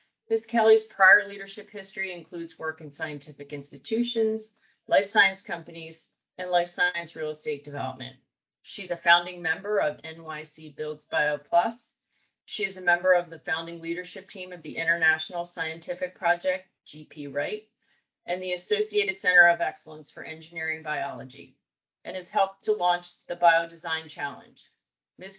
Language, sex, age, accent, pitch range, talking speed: English, female, 40-59, American, 155-200 Hz, 145 wpm